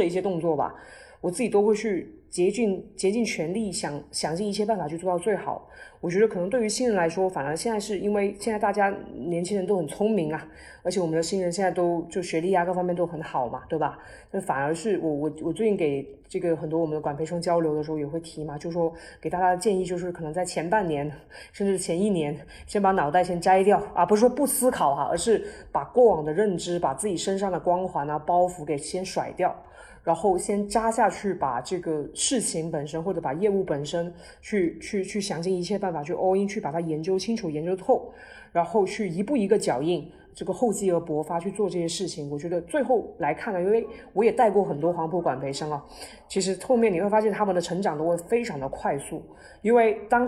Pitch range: 165-210 Hz